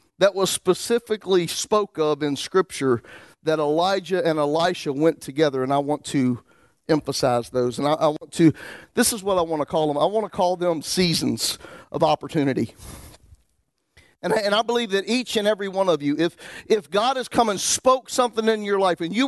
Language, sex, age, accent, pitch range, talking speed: English, male, 50-69, American, 125-200 Hz, 200 wpm